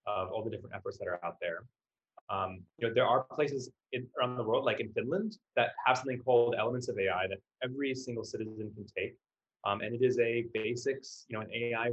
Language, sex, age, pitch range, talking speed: English, male, 20-39, 105-150 Hz, 225 wpm